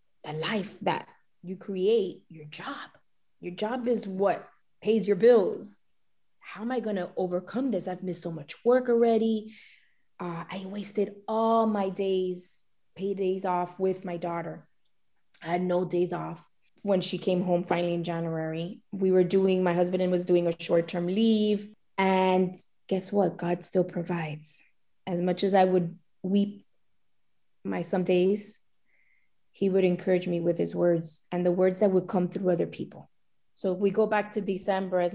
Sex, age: female, 20-39